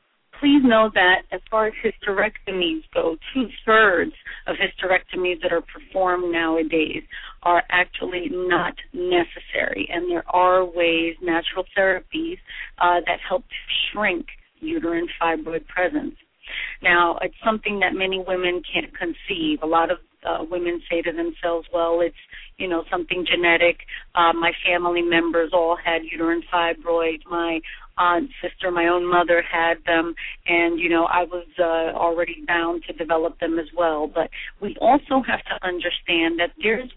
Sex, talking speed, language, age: female, 150 wpm, English, 40-59